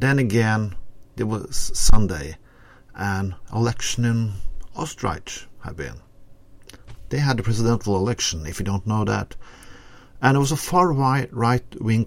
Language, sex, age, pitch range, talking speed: English, male, 50-69, 95-125 Hz, 130 wpm